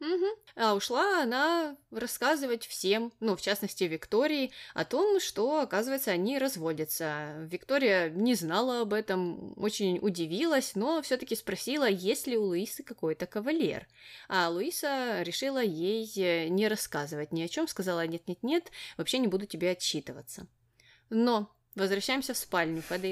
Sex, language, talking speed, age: female, Russian, 140 wpm, 20-39